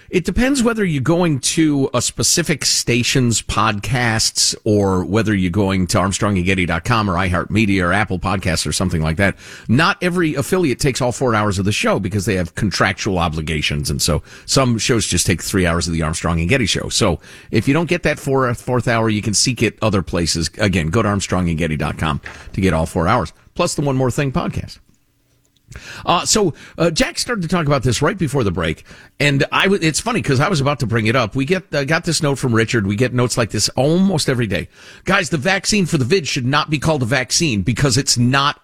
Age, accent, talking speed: 50-69, American, 215 wpm